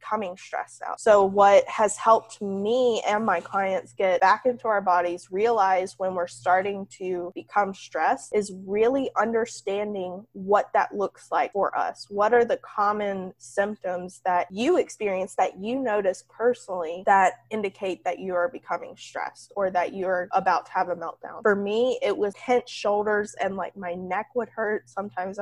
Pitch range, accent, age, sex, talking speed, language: 185-225 Hz, American, 20-39, female, 170 wpm, English